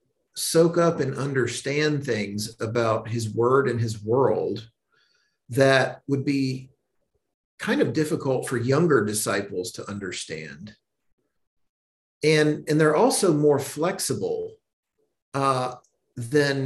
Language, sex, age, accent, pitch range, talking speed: English, male, 40-59, American, 115-150 Hz, 110 wpm